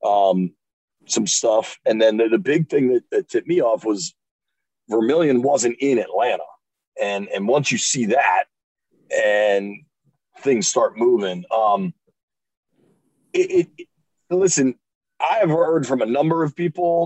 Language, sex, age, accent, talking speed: English, male, 40-59, American, 145 wpm